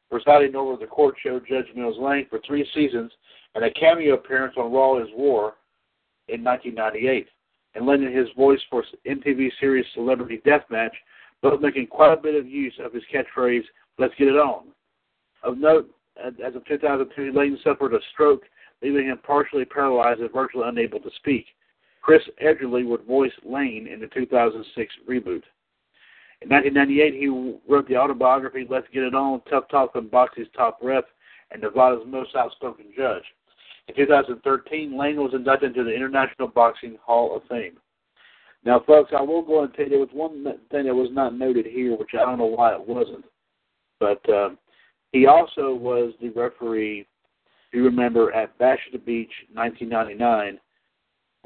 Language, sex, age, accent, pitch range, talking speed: English, male, 60-79, American, 120-145 Hz, 170 wpm